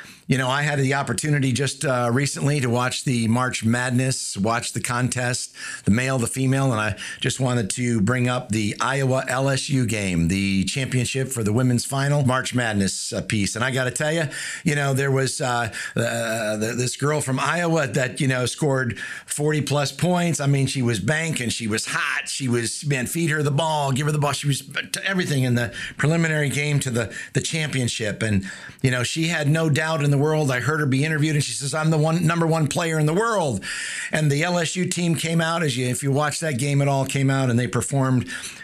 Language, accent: English, American